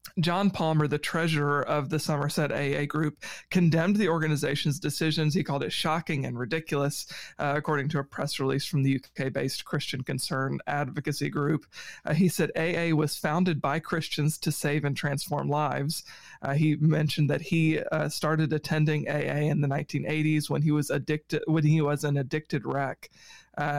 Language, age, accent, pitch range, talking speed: English, 40-59, American, 145-160 Hz, 165 wpm